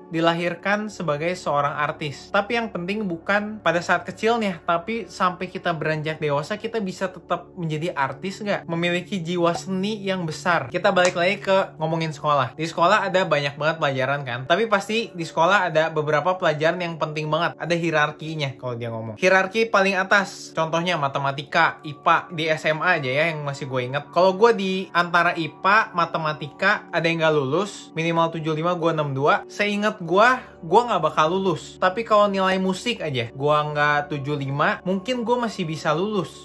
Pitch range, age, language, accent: 155-195 Hz, 20-39, Indonesian, native